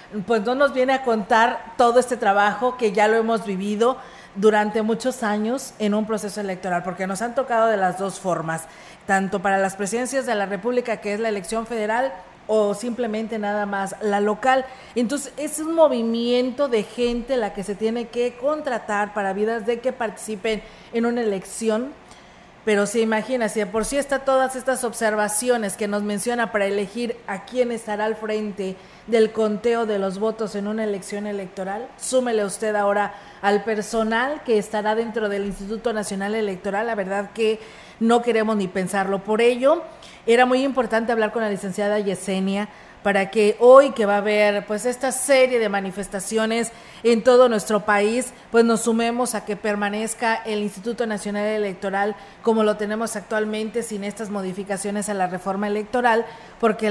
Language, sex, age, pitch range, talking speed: Spanish, female, 40-59, 205-235 Hz, 170 wpm